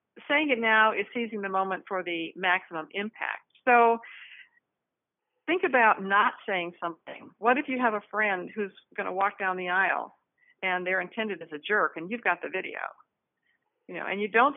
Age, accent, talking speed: 50-69, American, 190 wpm